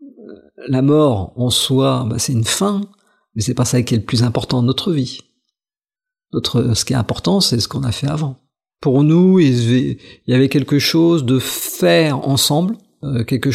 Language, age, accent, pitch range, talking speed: French, 50-69, French, 125-165 Hz, 190 wpm